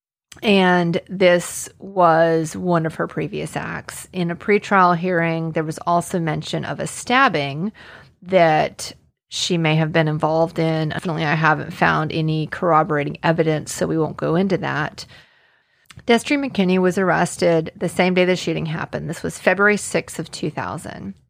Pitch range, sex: 165-195 Hz, female